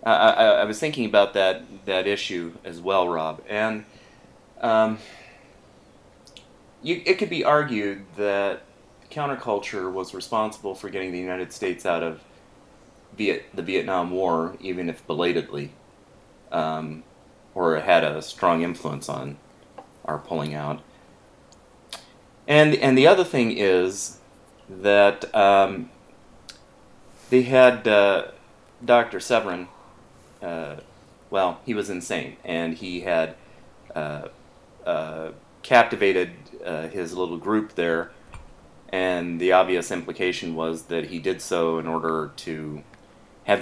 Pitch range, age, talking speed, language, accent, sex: 80-105 Hz, 30-49, 125 wpm, English, American, male